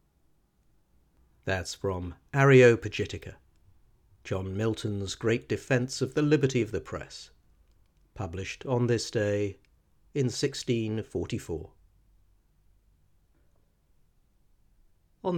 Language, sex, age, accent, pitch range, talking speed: English, male, 50-69, British, 90-120 Hz, 80 wpm